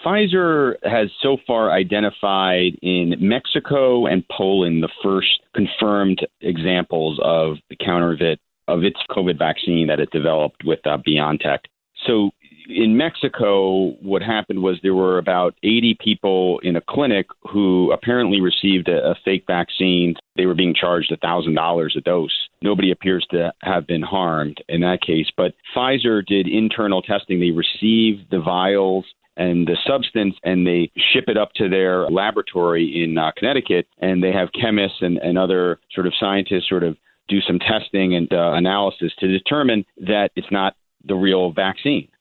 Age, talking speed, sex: 40-59, 160 wpm, male